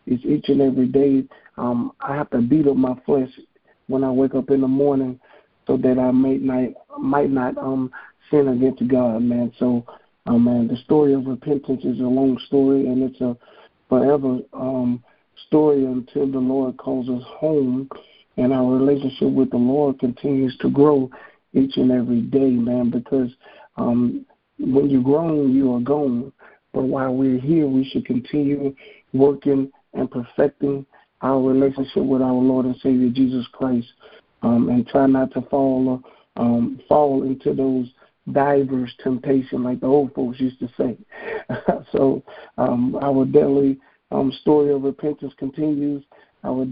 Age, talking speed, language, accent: 50-69, 160 wpm, English, American